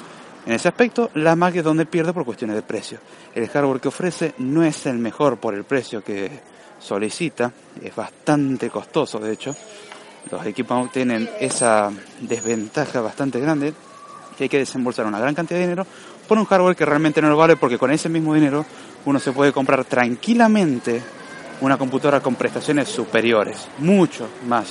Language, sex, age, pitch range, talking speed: Spanish, male, 30-49, 115-150 Hz, 170 wpm